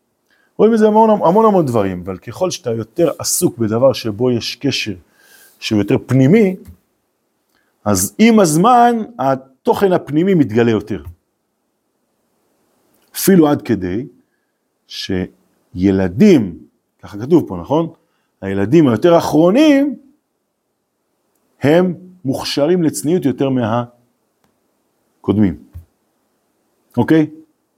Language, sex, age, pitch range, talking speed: Hebrew, male, 40-59, 105-165 Hz, 95 wpm